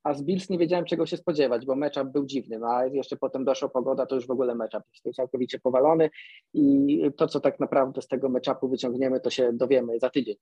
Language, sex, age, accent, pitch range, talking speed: Polish, male, 20-39, native, 130-160 Hz, 230 wpm